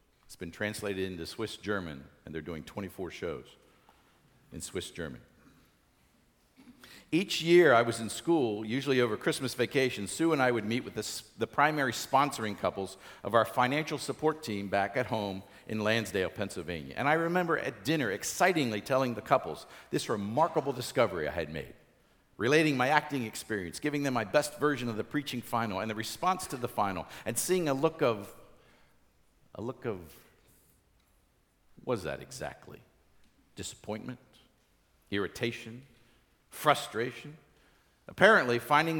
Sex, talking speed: male, 145 wpm